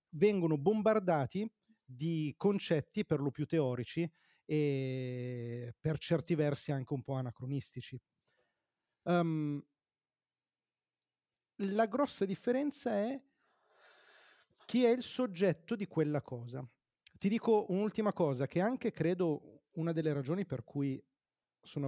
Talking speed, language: 110 wpm, Italian